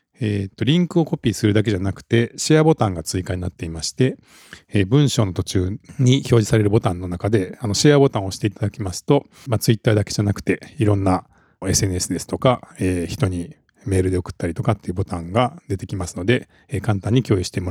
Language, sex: Japanese, male